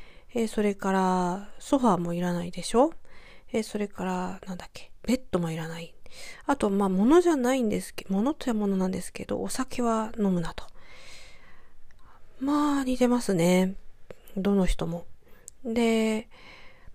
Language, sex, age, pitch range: Japanese, female, 40-59, 185-240 Hz